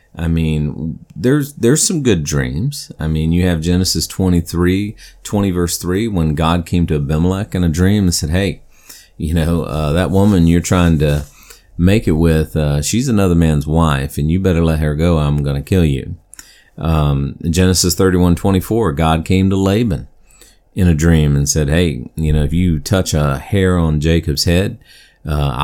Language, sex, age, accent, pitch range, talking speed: English, male, 40-59, American, 75-90 Hz, 185 wpm